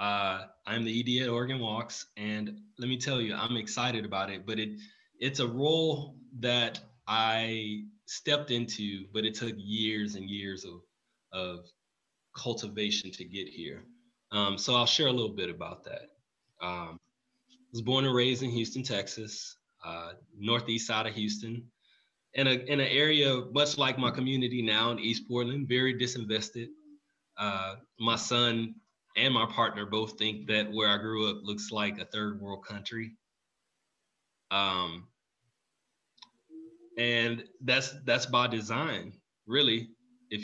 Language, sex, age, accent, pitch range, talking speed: English, male, 20-39, American, 105-125 Hz, 150 wpm